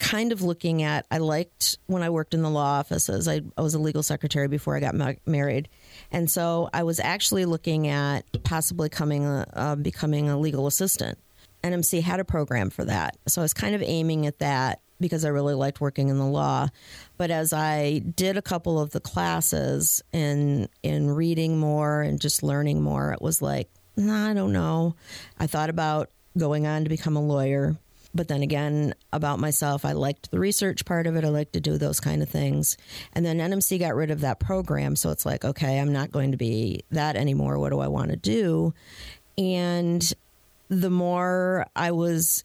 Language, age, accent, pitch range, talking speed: English, 40-59, American, 140-165 Hz, 200 wpm